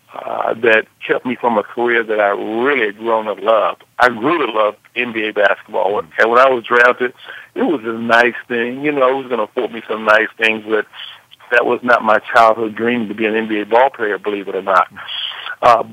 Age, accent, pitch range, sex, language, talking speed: 60-79, American, 115-125 Hz, male, English, 220 wpm